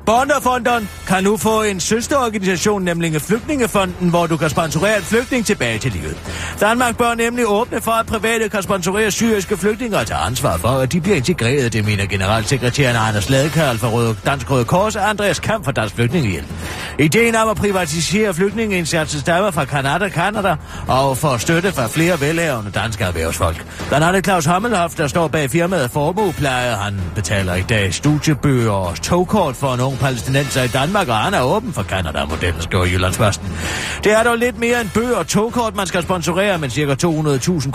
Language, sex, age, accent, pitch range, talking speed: Danish, male, 40-59, German, 125-195 Hz, 180 wpm